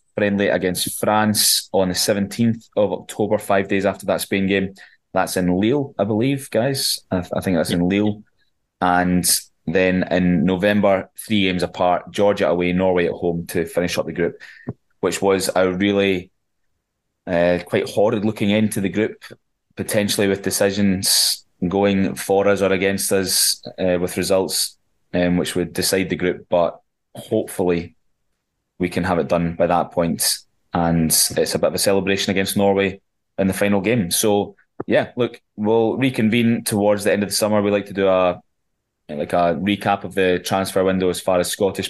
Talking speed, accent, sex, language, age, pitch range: 175 wpm, British, male, English, 20-39, 90-100 Hz